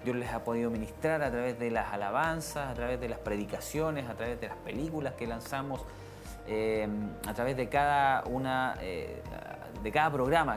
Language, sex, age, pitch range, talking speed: Spanish, male, 30-49, 110-135 Hz, 180 wpm